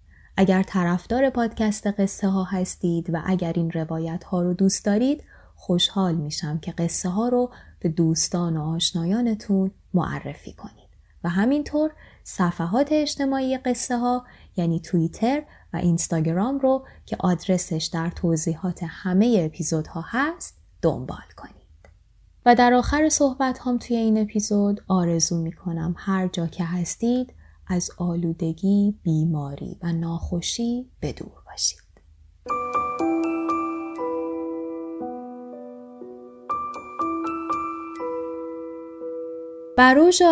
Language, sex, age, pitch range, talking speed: Persian, female, 20-39, 165-230 Hz, 105 wpm